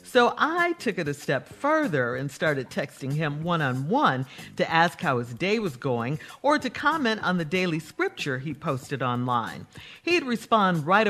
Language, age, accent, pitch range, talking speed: English, 50-69, American, 145-240 Hz, 175 wpm